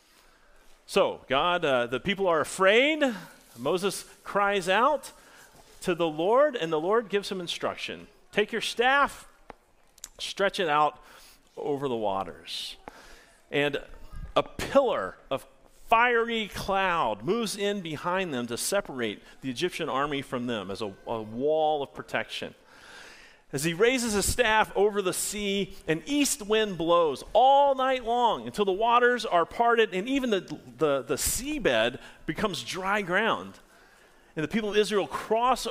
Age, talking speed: 40-59, 145 wpm